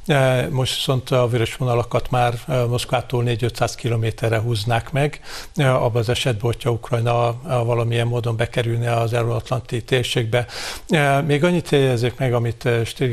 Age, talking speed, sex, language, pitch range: 50-69, 130 wpm, male, Hungarian, 120-130 Hz